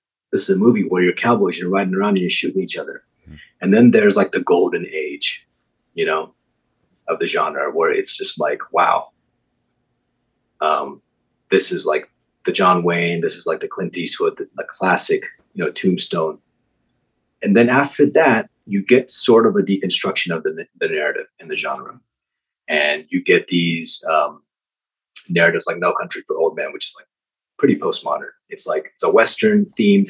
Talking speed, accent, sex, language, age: 180 wpm, American, male, English, 30-49